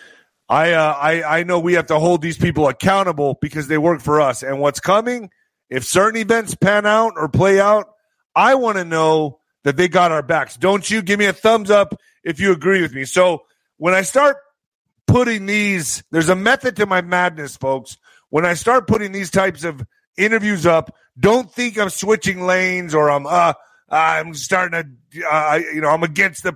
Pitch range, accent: 155-200 Hz, American